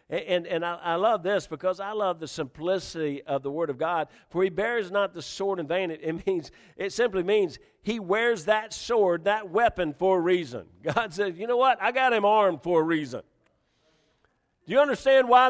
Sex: male